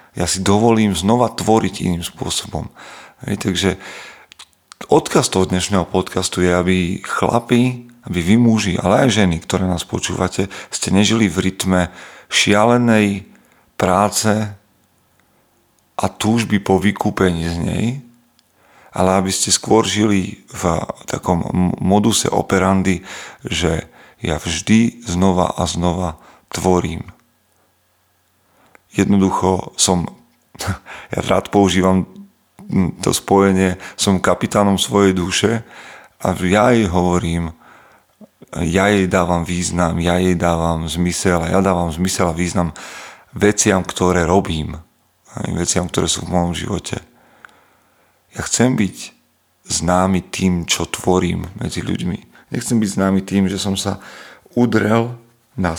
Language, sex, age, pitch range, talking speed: Slovak, male, 40-59, 90-105 Hz, 120 wpm